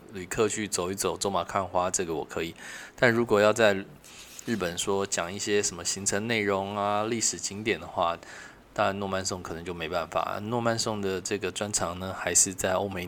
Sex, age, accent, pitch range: male, 20-39, native, 90-115 Hz